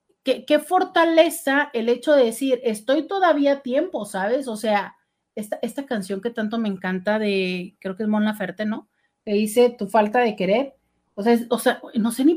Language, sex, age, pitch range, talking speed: Spanish, female, 40-59, 215-285 Hz, 205 wpm